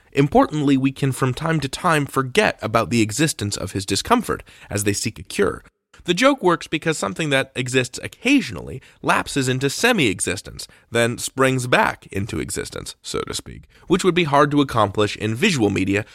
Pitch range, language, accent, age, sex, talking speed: 110-175 Hz, English, American, 20-39, male, 175 wpm